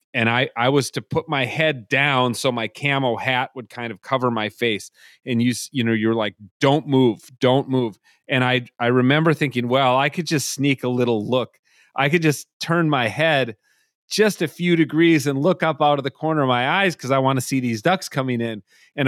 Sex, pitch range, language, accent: male, 130-185 Hz, English, American